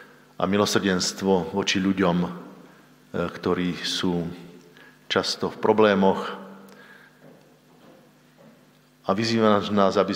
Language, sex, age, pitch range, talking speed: Slovak, male, 50-69, 85-100 Hz, 75 wpm